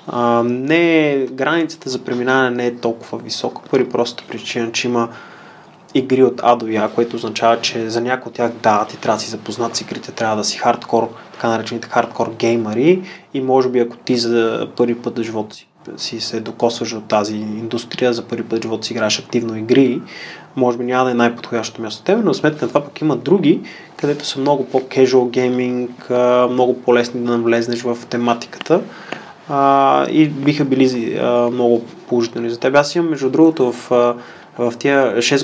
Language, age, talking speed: Bulgarian, 20-39, 185 wpm